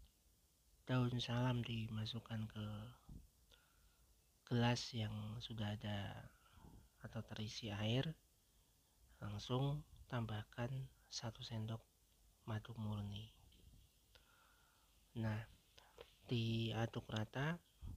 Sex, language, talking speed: male, Indonesian, 65 wpm